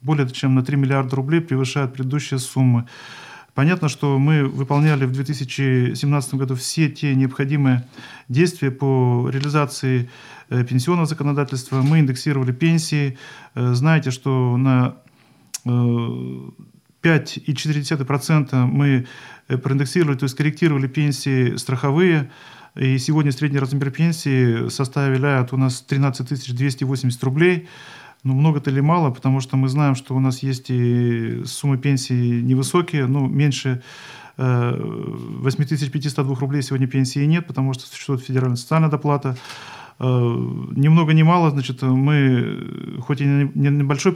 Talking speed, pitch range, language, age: 120 wpm, 130-150 Hz, Russian, 40-59